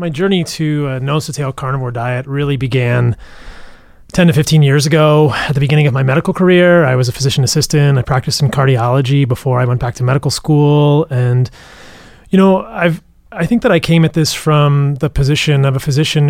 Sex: male